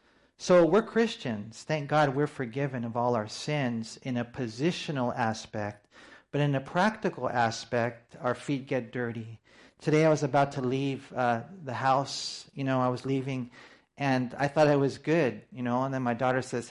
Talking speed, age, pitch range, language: 185 wpm, 40-59, 120-150 Hz, English